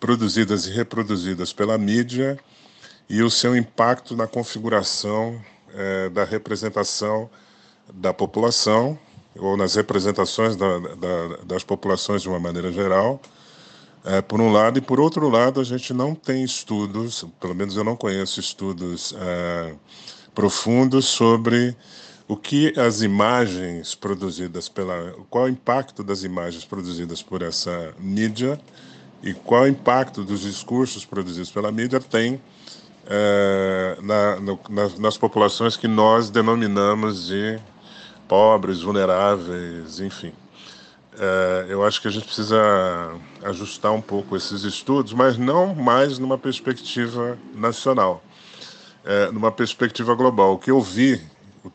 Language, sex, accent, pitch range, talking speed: Portuguese, male, Brazilian, 95-120 Hz, 130 wpm